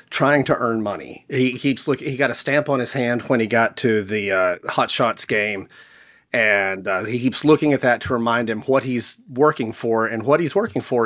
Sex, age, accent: male, 30-49, American